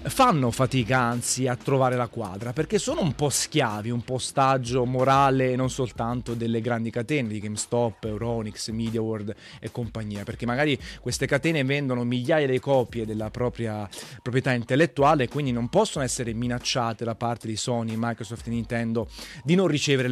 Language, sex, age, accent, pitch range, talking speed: Italian, male, 30-49, native, 120-150 Hz, 165 wpm